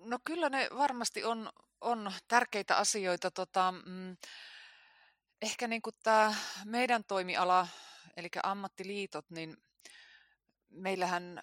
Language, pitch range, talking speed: Finnish, 165-210 Hz, 95 wpm